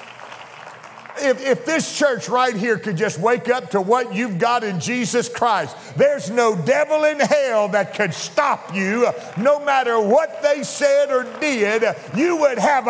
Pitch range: 155-235 Hz